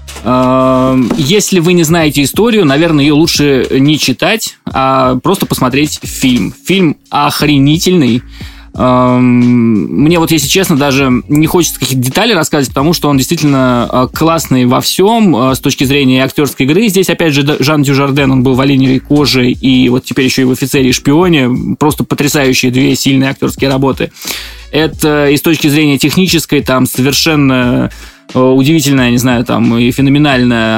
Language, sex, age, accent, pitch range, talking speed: Russian, male, 20-39, native, 125-150 Hz, 150 wpm